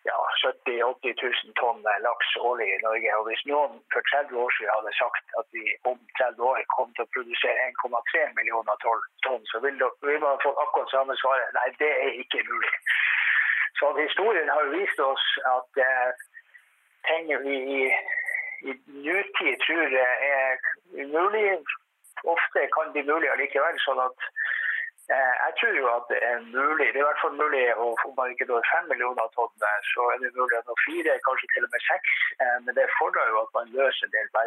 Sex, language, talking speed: male, English, 190 wpm